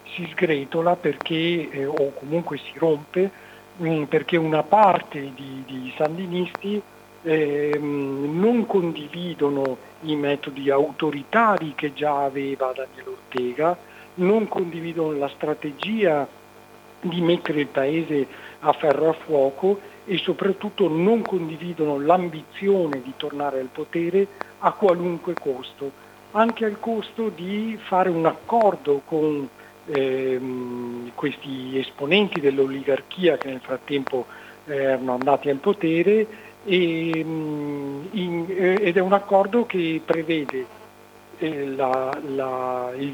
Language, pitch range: Italian, 140-180 Hz